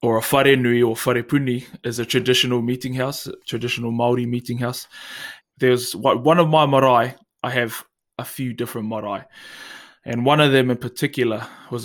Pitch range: 120-130 Hz